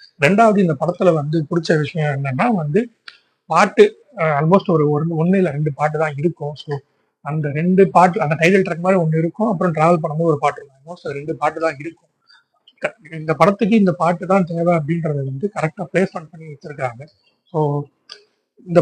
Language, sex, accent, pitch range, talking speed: Tamil, male, native, 145-175 Hz, 155 wpm